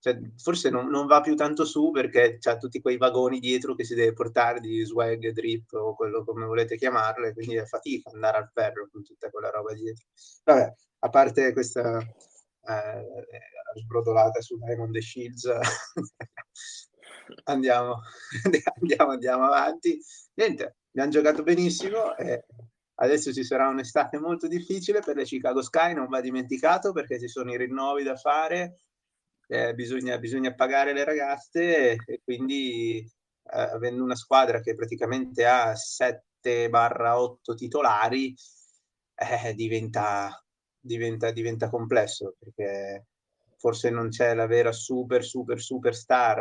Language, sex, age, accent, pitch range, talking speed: Italian, male, 30-49, native, 115-140 Hz, 140 wpm